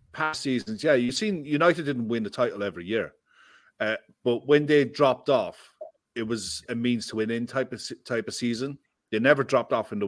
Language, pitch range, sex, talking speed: English, 105-130 Hz, male, 215 wpm